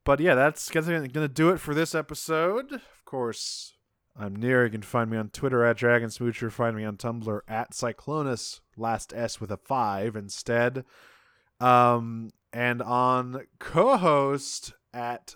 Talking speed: 150 wpm